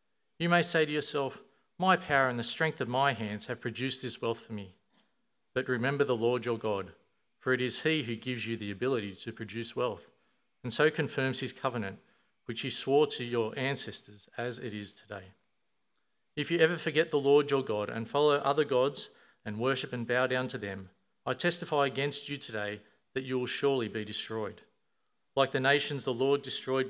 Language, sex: English, male